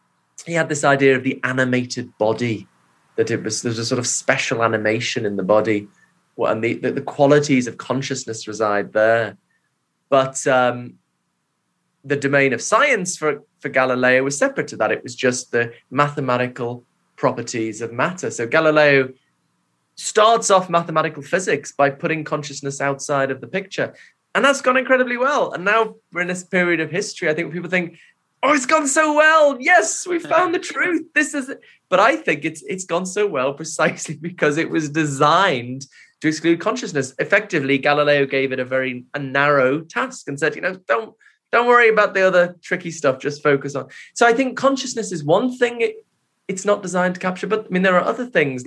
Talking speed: 190 wpm